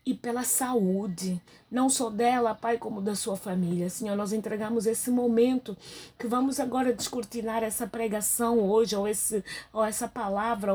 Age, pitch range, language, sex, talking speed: 20-39, 185-240 Hz, Portuguese, female, 155 wpm